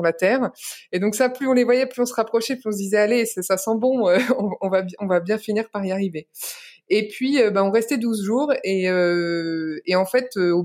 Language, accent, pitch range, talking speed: French, French, 175-240 Hz, 250 wpm